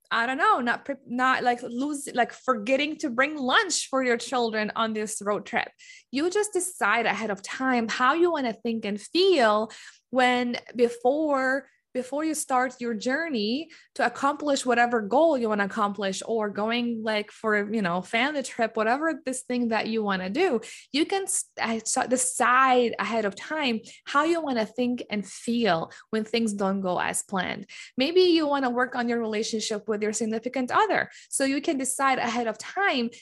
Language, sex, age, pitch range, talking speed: English, female, 20-39, 225-295 Hz, 180 wpm